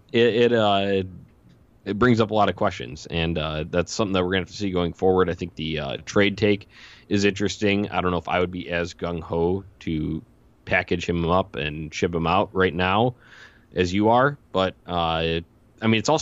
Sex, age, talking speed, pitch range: male, 20-39, 215 wpm, 85-105 Hz